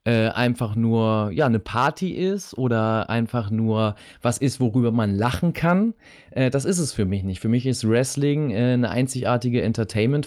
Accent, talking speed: German, 180 wpm